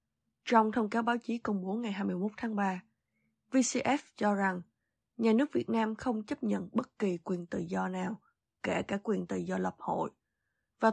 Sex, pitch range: female, 185-225 Hz